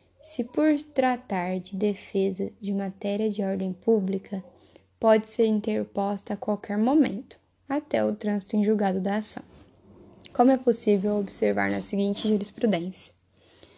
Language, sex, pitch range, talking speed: Portuguese, female, 200-235 Hz, 130 wpm